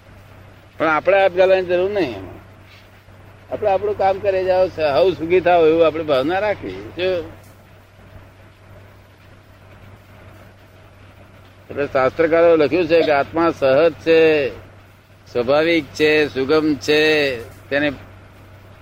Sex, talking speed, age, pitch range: male, 90 wpm, 60-79, 105-150 Hz